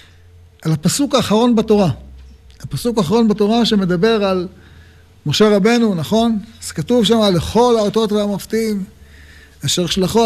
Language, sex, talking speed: Hebrew, male, 115 wpm